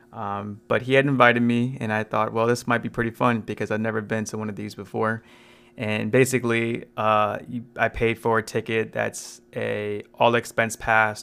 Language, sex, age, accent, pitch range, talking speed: English, male, 20-39, American, 110-120 Hz, 205 wpm